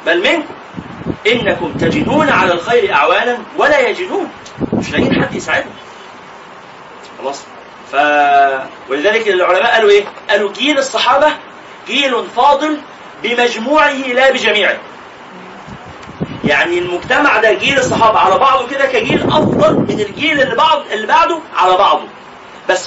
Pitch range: 195-290 Hz